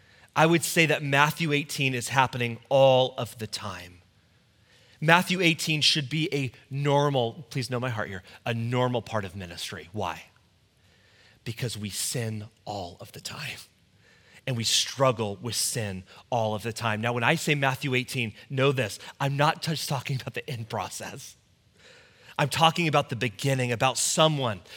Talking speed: 165 wpm